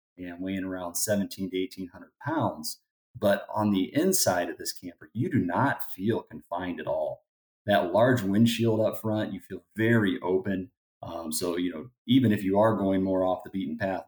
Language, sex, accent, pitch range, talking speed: English, male, American, 90-110 Hz, 190 wpm